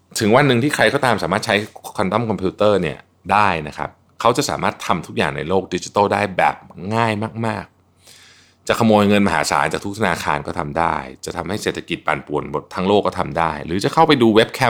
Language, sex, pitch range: Thai, male, 85-110 Hz